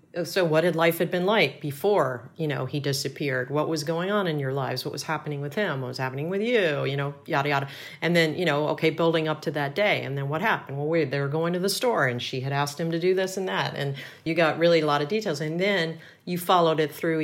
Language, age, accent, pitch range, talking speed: English, 40-59, American, 140-165 Hz, 275 wpm